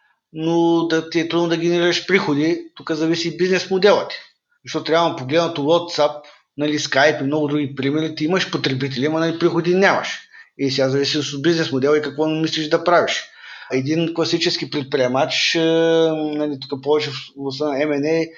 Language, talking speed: Bulgarian, 165 wpm